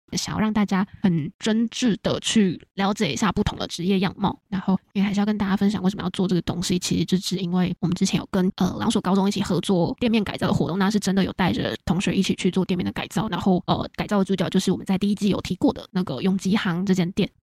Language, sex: Chinese, female